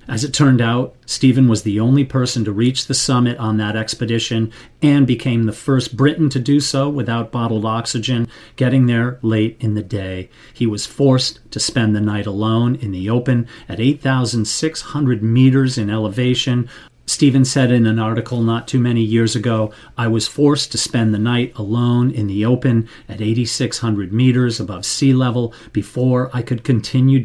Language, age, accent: English, 40-59, American